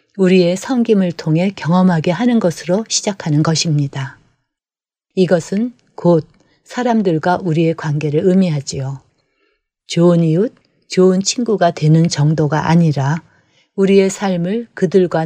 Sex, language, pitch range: female, Korean, 155-195 Hz